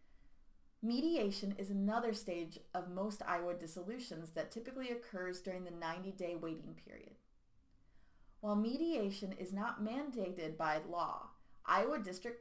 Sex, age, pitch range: female, 30-49, 190-240 Hz